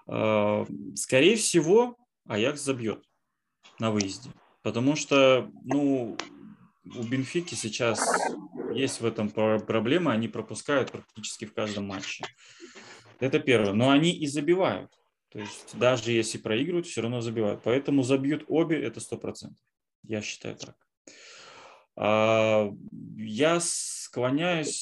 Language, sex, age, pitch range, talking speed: Russian, male, 20-39, 105-135 Hz, 110 wpm